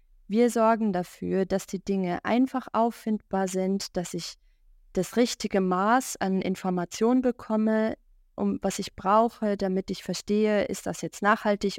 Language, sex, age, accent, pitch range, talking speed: German, female, 20-39, German, 180-215 Hz, 145 wpm